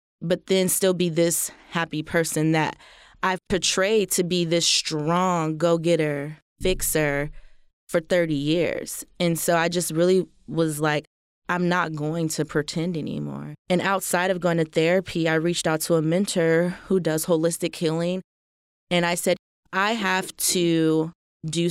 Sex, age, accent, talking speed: female, 20-39, American, 150 wpm